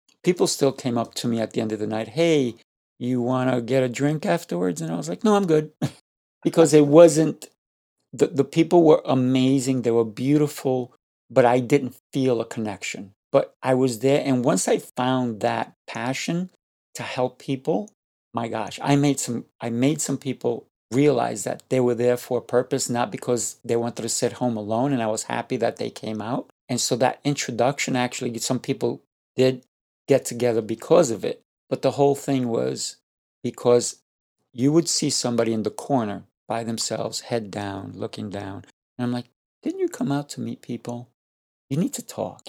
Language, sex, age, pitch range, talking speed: English, male, 50-69, 115-140 Hz, 190 wpm